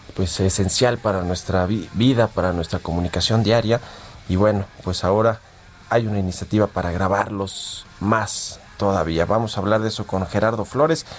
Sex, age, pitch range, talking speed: male, 40-59, 95-120 Hz, 150 wpm